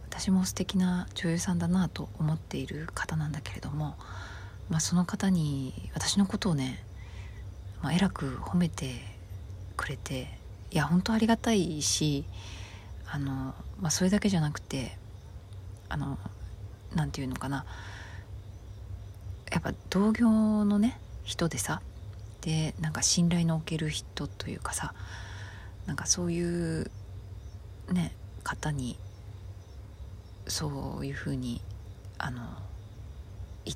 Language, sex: Japanese, female